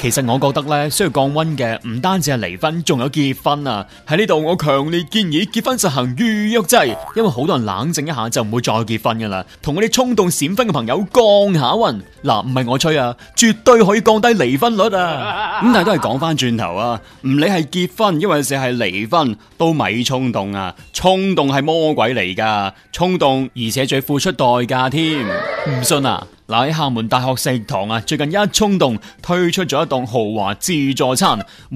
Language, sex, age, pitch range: Chinese, male, 30-49, 130-200 Hz